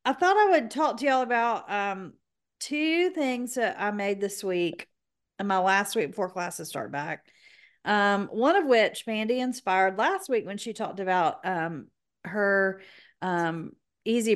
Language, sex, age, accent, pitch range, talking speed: English, female, 40-59, American, 190-245 Hz, 165 wpm